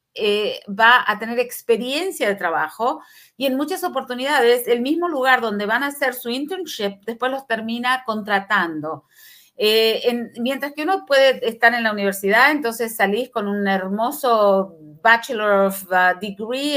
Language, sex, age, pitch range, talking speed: Spanish, female, 40-59, 200-260 Hz, 150 wpm